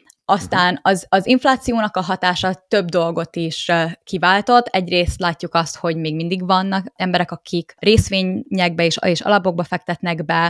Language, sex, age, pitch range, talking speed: Hungarian, female, 20-39, 170-205 Hz, 135 wpm